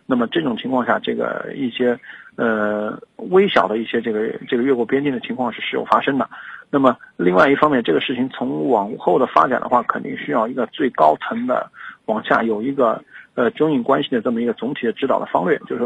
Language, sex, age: Chinese, male, 50-69